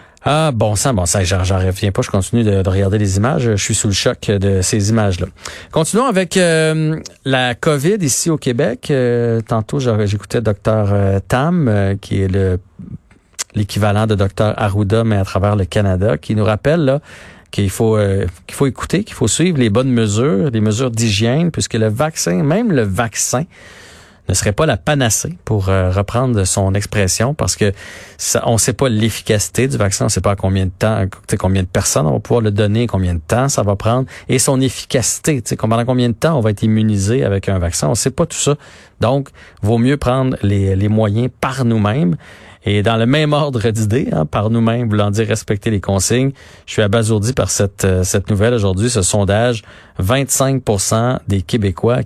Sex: male